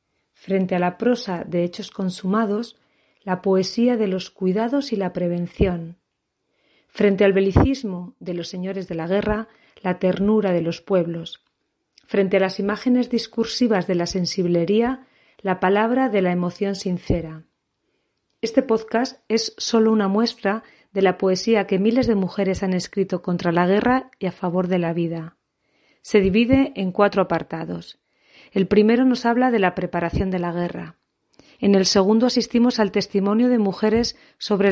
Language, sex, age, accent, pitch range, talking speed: Spanish, female, 40-59, Spanish, 180-225 Hz, 155 wpm